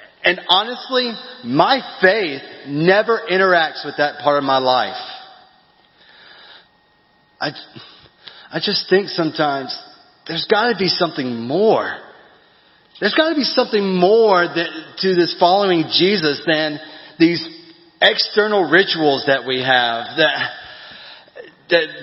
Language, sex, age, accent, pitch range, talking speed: English, male, 30-49, American, 145-190 Hz, 115 wpm